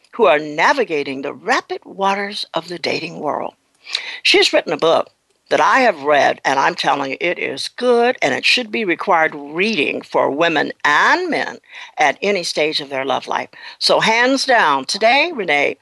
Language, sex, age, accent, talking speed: English, female, 60-79, American, 180 wpm